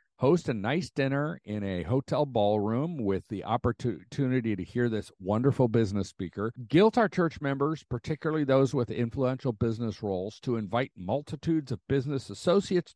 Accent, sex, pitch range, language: American, male, 110-170 Hz, English